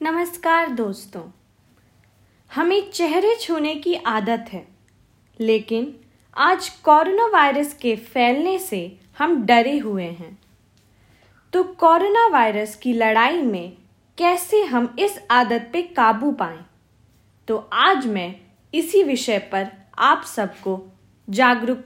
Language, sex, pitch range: Hindi, female, 195-310 Hz